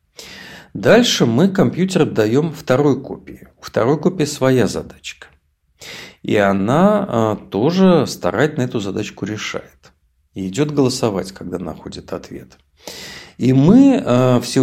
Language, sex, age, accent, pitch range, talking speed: Russian, male, 50-69, native, 100-165 Hz, 115 wpm